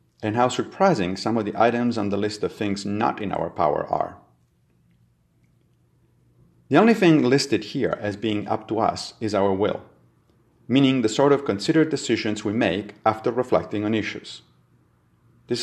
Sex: male